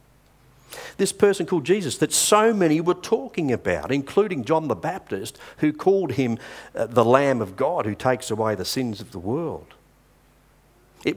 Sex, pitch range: male, 115-170 Hz